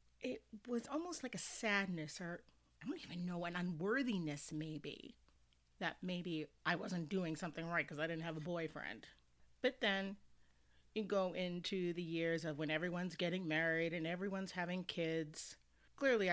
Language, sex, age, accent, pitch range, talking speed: English, female, 40-59, American, 155-190 Hz, 160 wpm